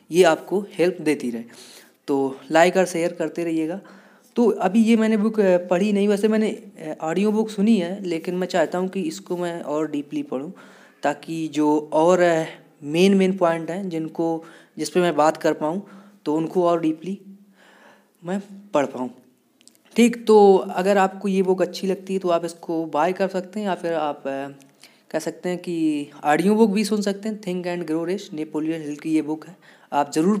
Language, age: Hindi, 20-39